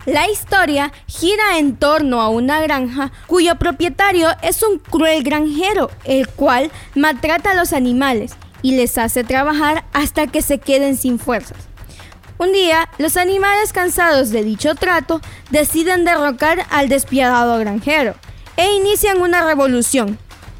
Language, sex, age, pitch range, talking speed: Spanish, female, 20-39, 245-320 Hz, 135 wpm